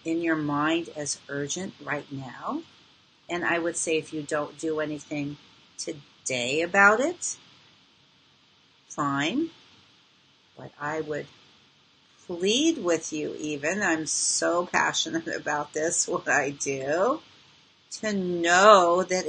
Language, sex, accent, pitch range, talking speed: English, female, American, 150-225 Hz, 120 wpm